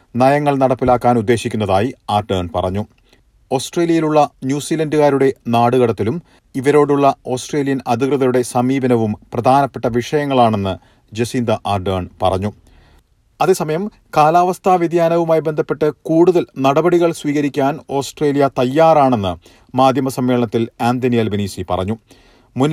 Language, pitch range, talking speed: Malayalam, 120-155 Hz, 85 wpm